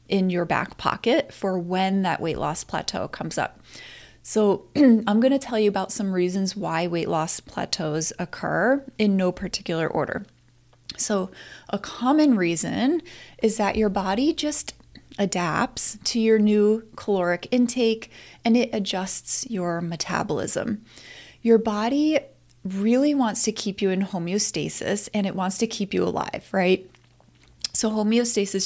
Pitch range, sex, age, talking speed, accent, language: 180-230 Hz, female, 30-49, 145 wpm, American, English